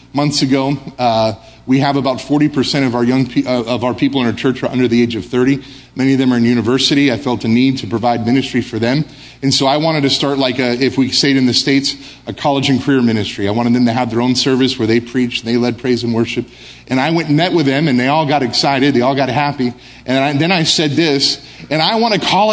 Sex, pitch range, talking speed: male, 110-145 Hz, 270 wpm